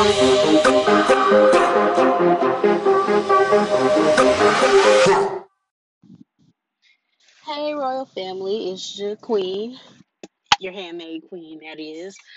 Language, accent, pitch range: English, American, 180-240 Hz